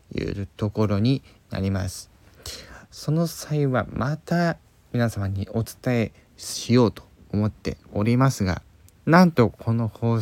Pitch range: 100-125 Hz